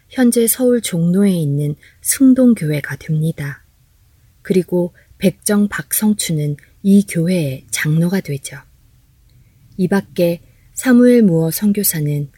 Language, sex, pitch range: Korean, female, 140-190 Hz